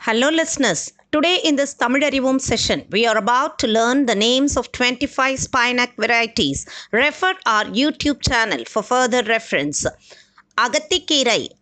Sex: female